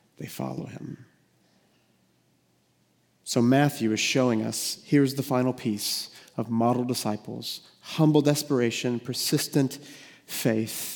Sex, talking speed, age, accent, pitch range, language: male, 105 wpm, 40-59, American, 115-135 Hz, English